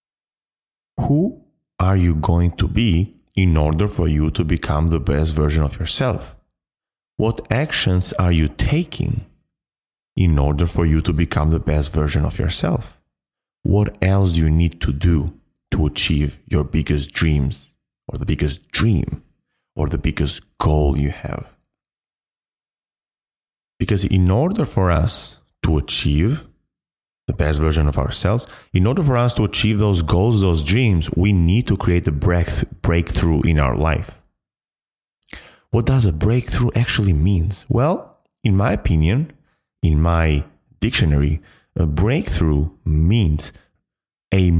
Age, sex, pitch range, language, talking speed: 30-49, male, 75-100 Hz, English, 140 wpm